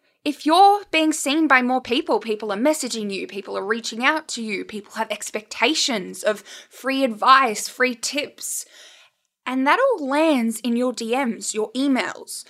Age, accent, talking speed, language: 10-29, Australian, 165 wpm, English